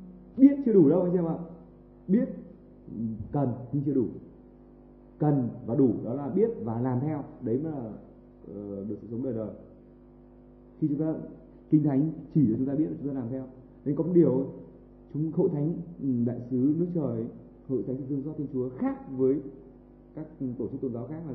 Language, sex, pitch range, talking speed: Vietnamese, male, 125-155 Hz, 195 wpm